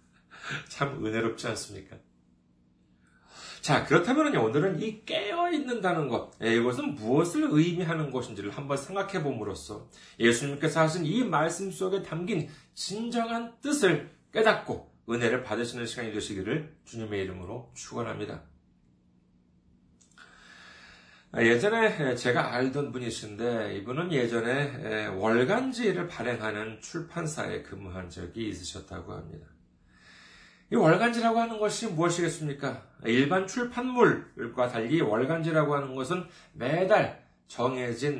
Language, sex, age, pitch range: Korean, male, 40-59, 110-180 Hz